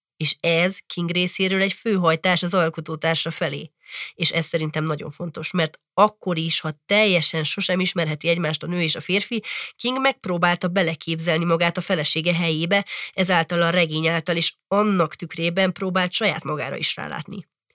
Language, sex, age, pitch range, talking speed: Hungarian, female, 30-49, 160-185 Hz, 155 wpm